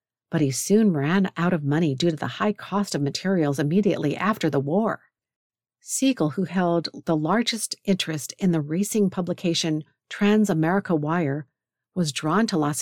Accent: American